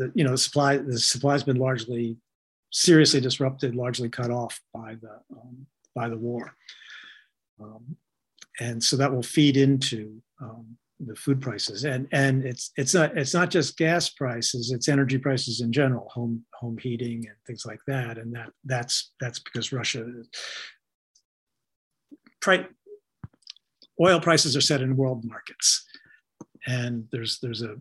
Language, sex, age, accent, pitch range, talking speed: English, male, 50-69, American, 120-155 Hz, 150 wpm